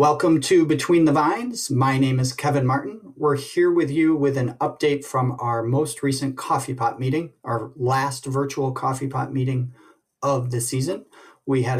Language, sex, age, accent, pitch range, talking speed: English, male, 30-49, American, 120-140 Hz, 180 wpm